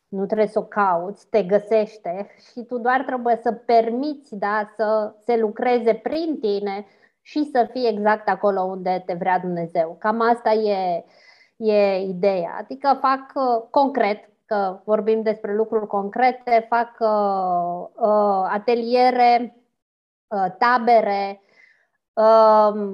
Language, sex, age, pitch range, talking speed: Romanian, female, 20-39, 200-230 Hz, 115 wpm